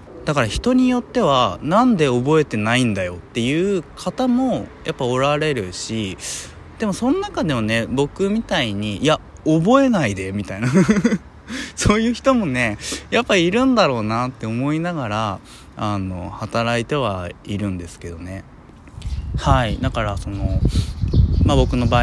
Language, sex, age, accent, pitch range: Japanese, male, 20-39, native, 95-145 Hz